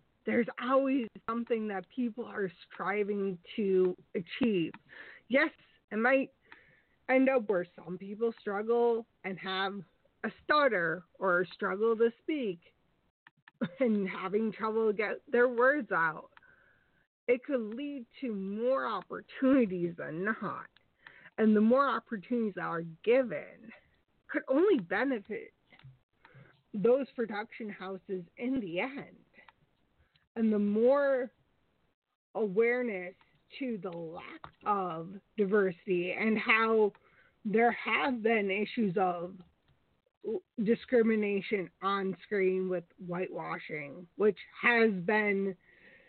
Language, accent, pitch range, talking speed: English, American, 190-245 Hz, 105 wpm